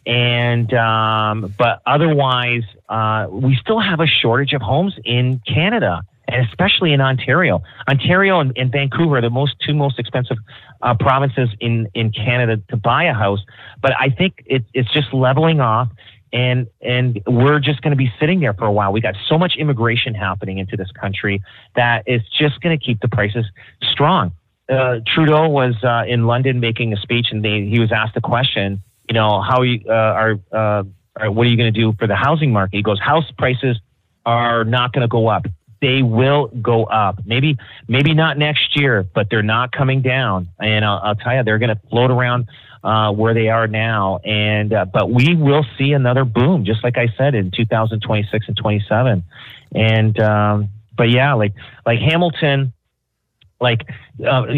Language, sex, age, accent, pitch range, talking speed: English, male, 30-49, American, 110-135 Hz, 190 wpm